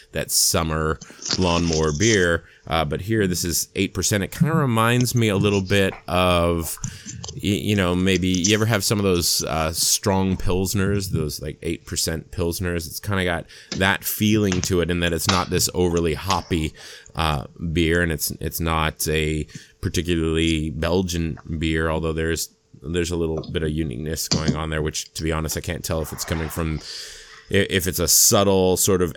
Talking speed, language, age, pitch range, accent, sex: 185 wpm, English, 30-49, 80-95 Hz, American, male